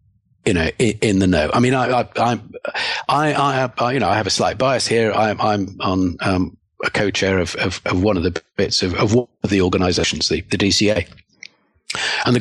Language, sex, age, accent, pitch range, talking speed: English, male, 50-69, British, 95-120 Hz, 220 wpm